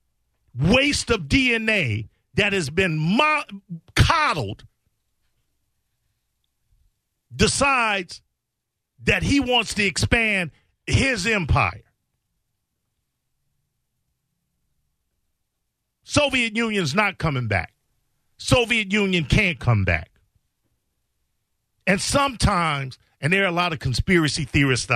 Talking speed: 85 wpm